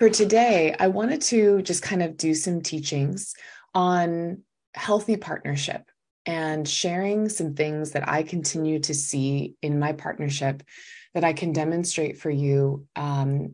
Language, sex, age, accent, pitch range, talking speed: English, female, 20-39, American, 145-185 Hz, 145 wpm